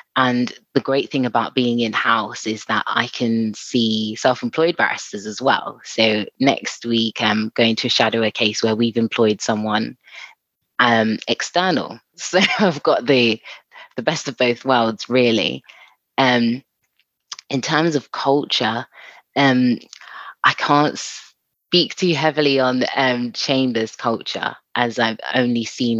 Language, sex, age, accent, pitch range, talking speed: English, female, 20-39, British, 110-130 Hz, 140 wpm